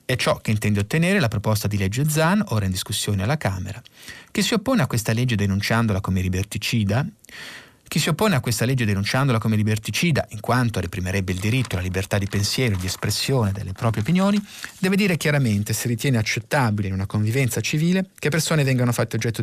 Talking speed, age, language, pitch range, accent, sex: 195 wpm, 30-49, Italian, 105-140 Hz, native, male